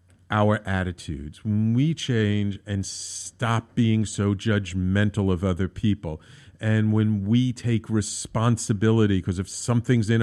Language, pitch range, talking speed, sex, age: English, 95-115 Hz, 130 wpm, male, 50-69